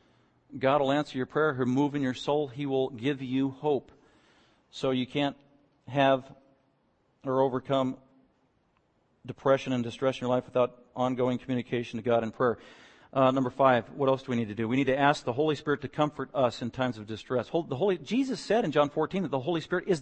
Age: 50-69